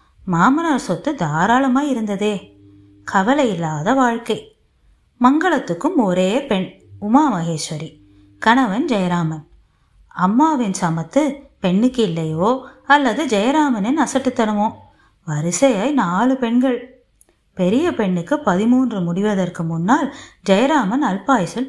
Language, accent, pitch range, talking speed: Tamil, native, 175-260 Hz, 65 wpm